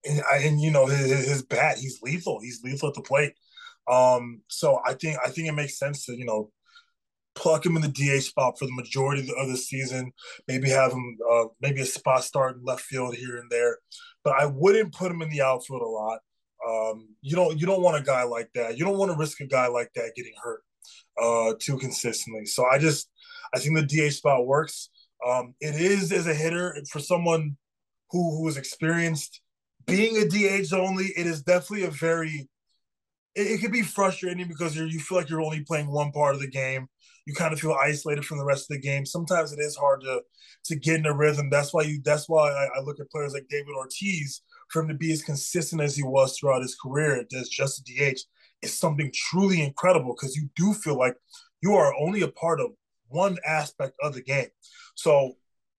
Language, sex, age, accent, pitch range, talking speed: English, male, 20-39, American, 135-170 Hz, 220 wpm